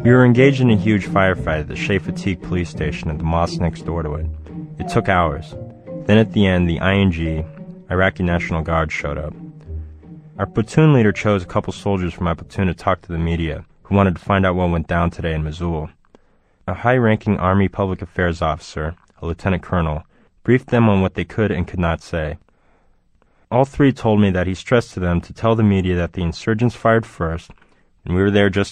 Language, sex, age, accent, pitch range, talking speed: English, male, 20-39, American, 85-105 Hz, 210 wpm